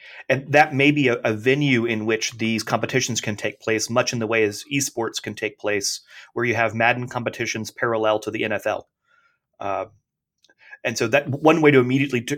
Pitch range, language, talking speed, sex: 110-135 Hz, English, 200 wpm, male